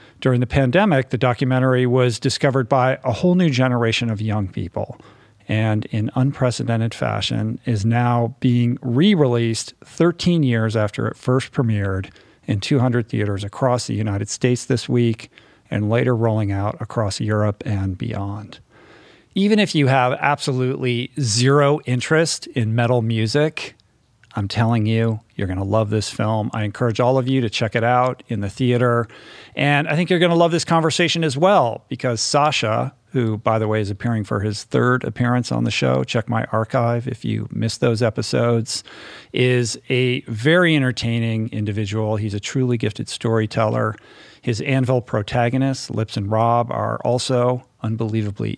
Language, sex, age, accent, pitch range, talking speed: English, male, 50-69, American, 110-130 Hz, 160 wpm